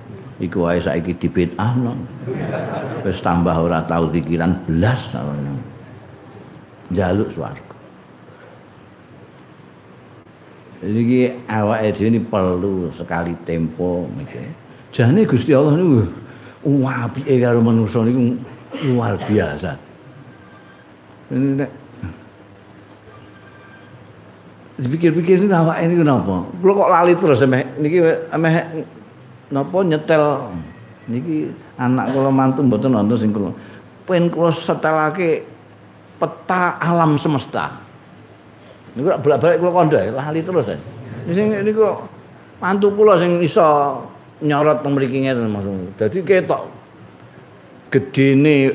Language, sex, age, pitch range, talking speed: Indonesian, male, 60-79, 105-155 Hz, 100 wpm